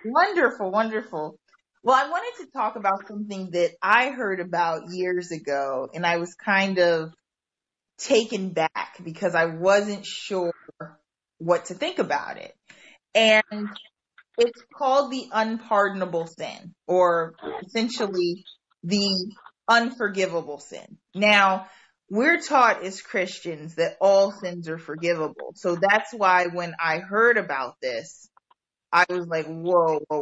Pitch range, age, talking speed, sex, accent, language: 170-215 Hz, 30-49, 130 wpm, female, American, English